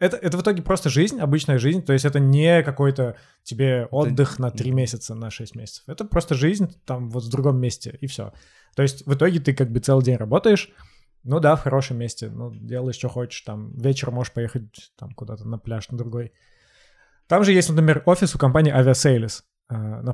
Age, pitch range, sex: 20-39, 120-150 Hz, male